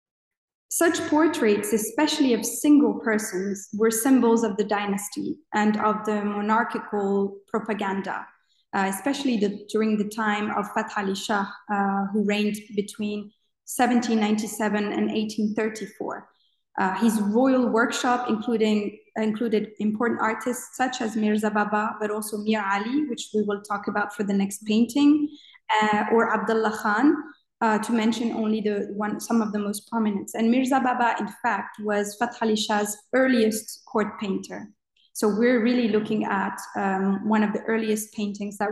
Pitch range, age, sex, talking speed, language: 210-235 Hz, 20-39, female, 145 wpm, English